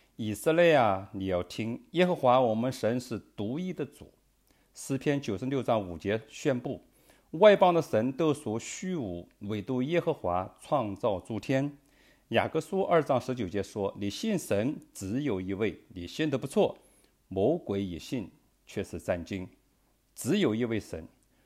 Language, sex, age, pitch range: English, male, 50-69, 95-145 Hz